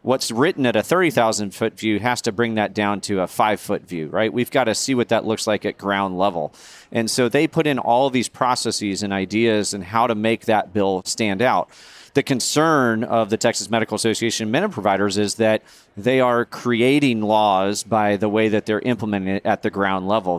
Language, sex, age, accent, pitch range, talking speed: English, male, 40-59, American, 105-120 Hz, 210 wpm